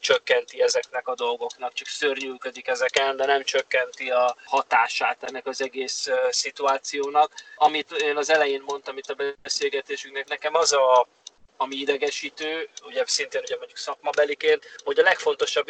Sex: male